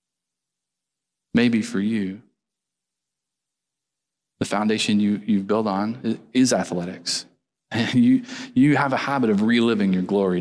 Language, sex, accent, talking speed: English, male, American, 115 wpm